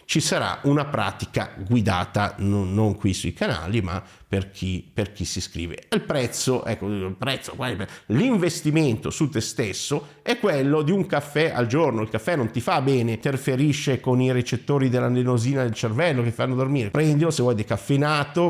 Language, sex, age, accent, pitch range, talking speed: Italian, male, 50-69, native, 100-135 Hz, 175 wpm